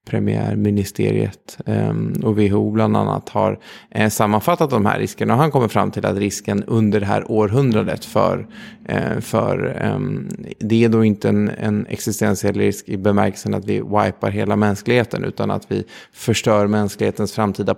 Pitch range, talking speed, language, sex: 100-110 Hz, 160 wpm, Swedish, male